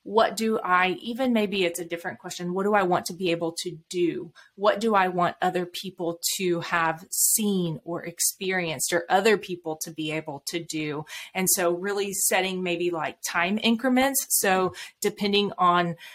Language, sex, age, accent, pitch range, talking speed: English, female, 30-49, American, 175-205 Hz, 180 wpm